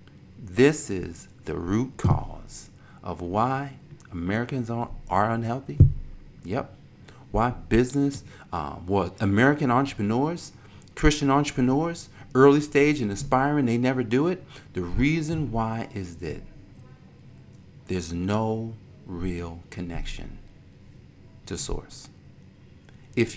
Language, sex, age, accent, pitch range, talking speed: English, male, 50-69, American, 95-135 Hz, 105 wpm